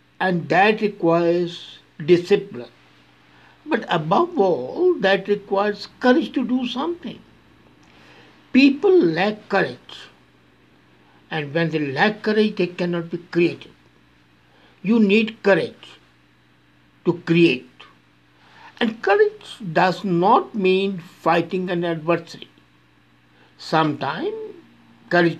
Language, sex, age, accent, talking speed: English, male, 60-79, Indian, 95 wpm